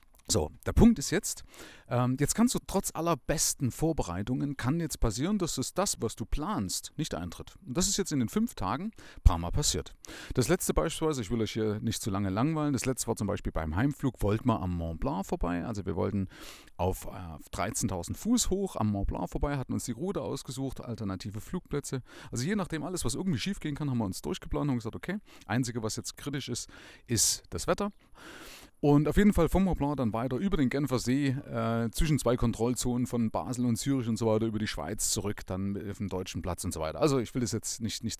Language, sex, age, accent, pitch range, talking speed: German, male, 40-59, German, 100-145 Hz, 230 wpm